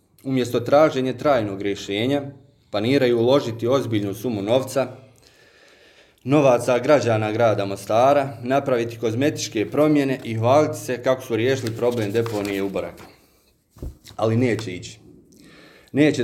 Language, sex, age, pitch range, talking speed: Croatian, male, 30-49, 105-130 Hz, 110 wpm